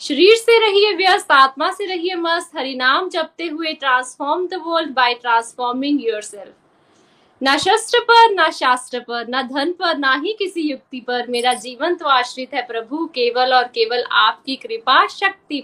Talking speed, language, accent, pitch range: 70 wpm, Hindi, native, 270-365 Hz